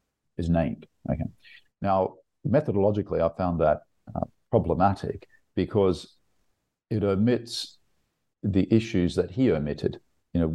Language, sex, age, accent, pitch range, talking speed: English, male, 50-69, Australian, 80-95 Hz, 115 wpm